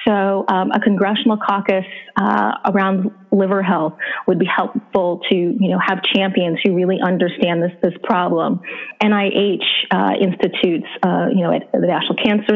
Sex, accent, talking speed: female, American, 160 wpm